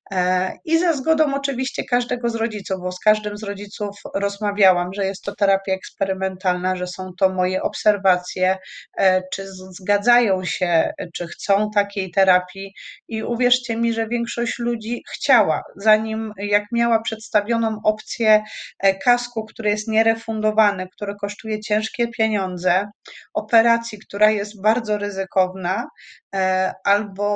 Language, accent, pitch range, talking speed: Polish, native, 190-225 Hz, 125 wpm